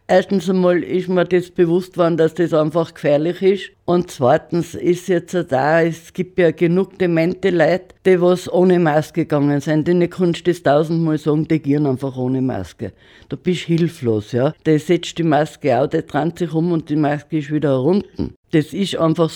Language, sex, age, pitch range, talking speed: German, female, 60-79, 150-175 Hz, 205 wpm